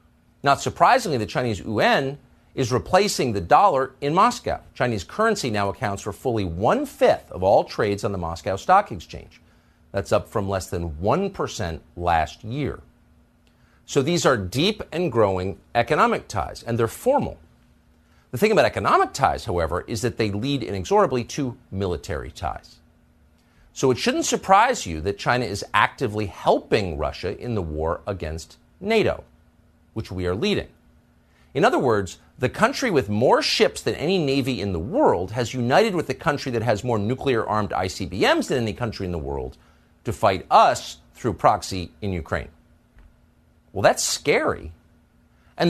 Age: 50-69